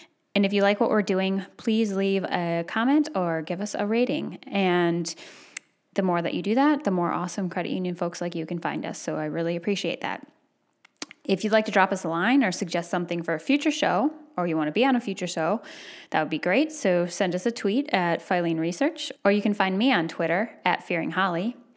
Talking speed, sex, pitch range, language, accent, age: 235 wpm, female, 175-245 Hz, English, American, 10-29